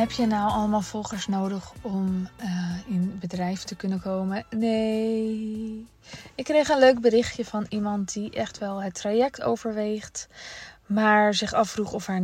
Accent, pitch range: Dutch, 190-240 Hz